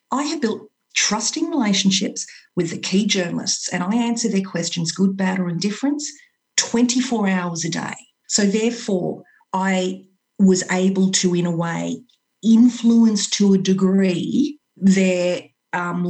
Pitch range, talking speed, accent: 185-225 Hz, 140 wpm, Australian